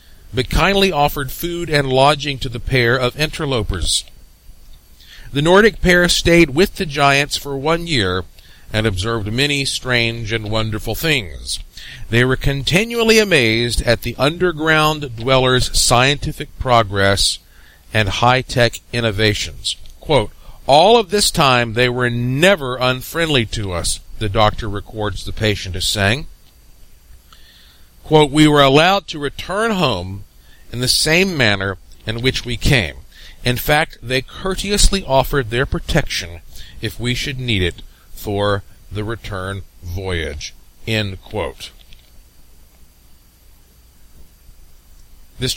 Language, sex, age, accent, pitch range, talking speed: English, male, 50-69, American, 95-140 Hz, 120 wpm